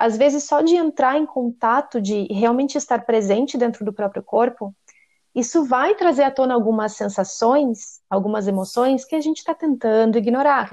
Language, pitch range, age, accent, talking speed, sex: Portuguese, 220-290 Hz, 30-49, Brazilian, 175 wpm, female